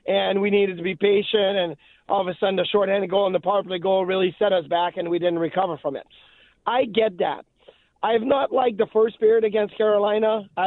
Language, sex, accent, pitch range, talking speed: English, male, American, 190-225 Hz, 235 wpm